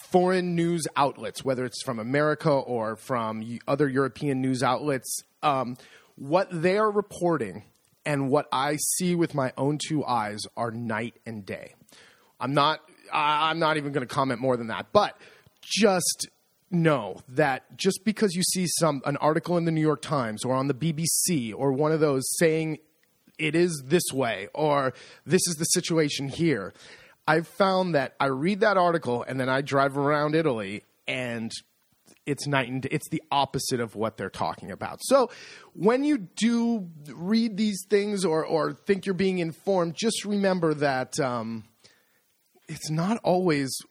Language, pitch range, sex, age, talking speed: English, 130-175 Hz, male, 30-49, 170 wpm